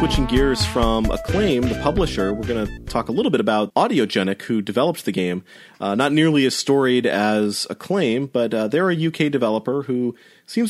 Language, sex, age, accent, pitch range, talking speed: English, male, 30-49, American, 115-155 Hz, 190 wpm